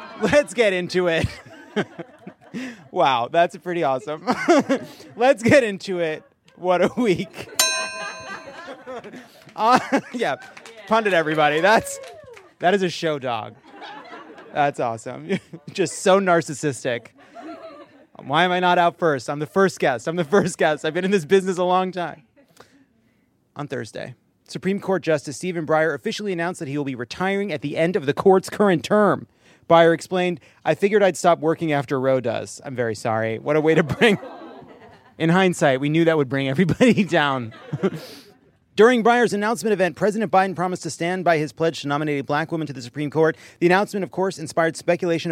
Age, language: 30-49, English